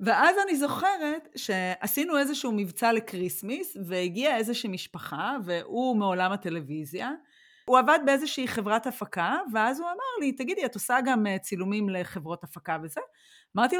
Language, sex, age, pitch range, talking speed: Hebrew, female, 30-49, 190-270 Hz, 135 wpm